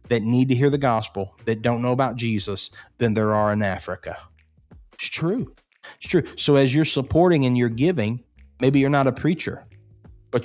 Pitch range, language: 110-140 Hz, English